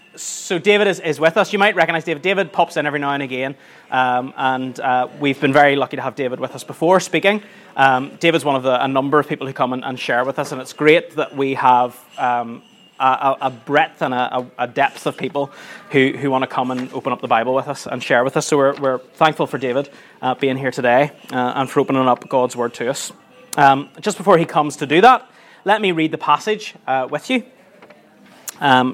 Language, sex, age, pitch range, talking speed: English, male, 20-39, 130-170 Hz, 230 wpm